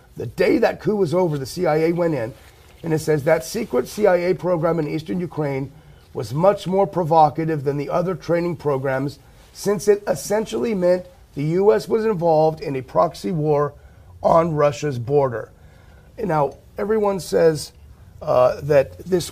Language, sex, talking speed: English, male, 155 wpm